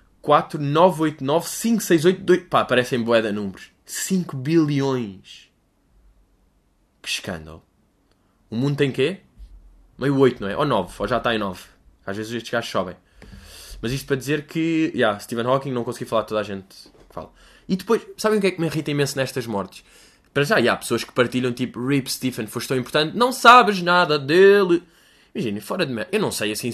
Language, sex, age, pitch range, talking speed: Portuguese, male, 20-39, 105-170 Hz, 200 wpm